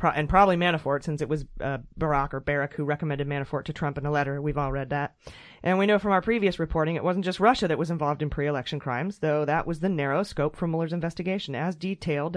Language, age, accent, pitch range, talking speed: English, 30-49, American, 145-185 Hz, 245 wpm